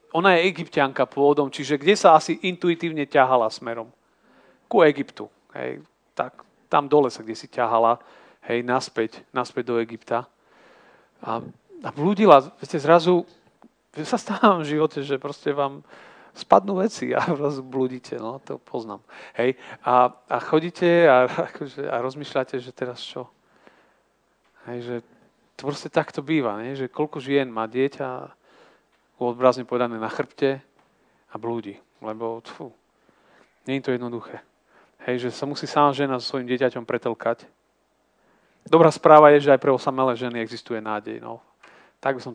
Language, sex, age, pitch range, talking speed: Slovak, male, 40-59, 125-160 Hz, 150 wpm